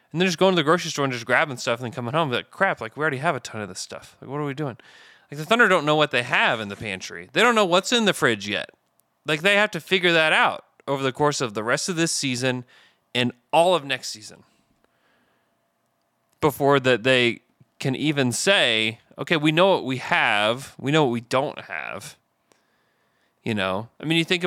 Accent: American